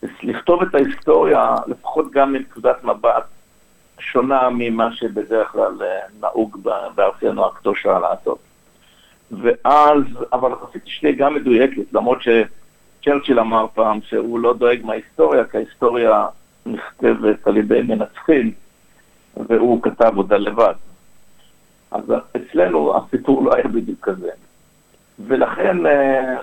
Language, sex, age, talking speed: English, male, 60-79, 110 wpm